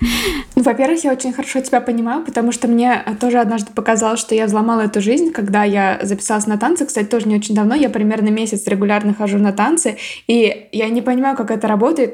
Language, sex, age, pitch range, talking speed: Russian, female, 20-39, 205-245 Hz, 210 wpm